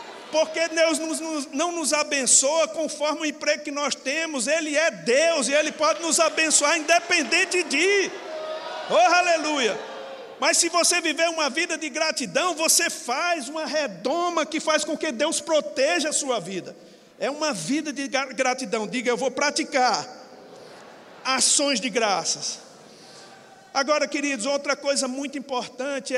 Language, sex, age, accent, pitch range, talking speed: Portuguese, male, 50-69, Brazilian, 260-310 Hz, 140 wpm